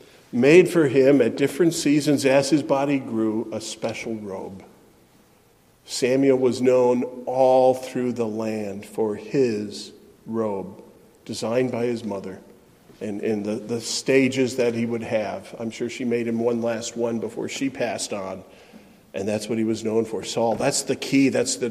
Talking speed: 170 wpm